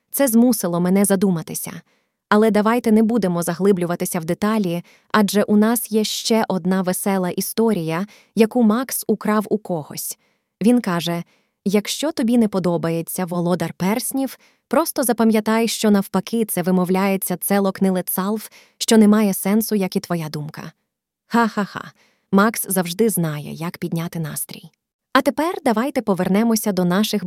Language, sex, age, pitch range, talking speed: Ukrainian, female, 20-39, 185-225 Hz, 135 wpm